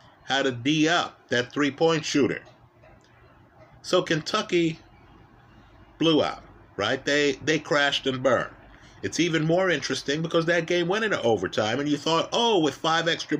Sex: male